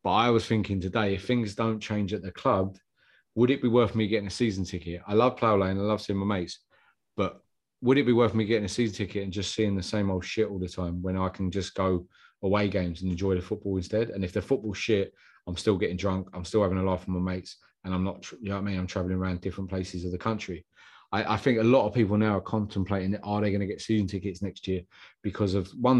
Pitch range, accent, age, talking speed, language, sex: 95-110 Hz, British, 30-49, 270 wpm, English, male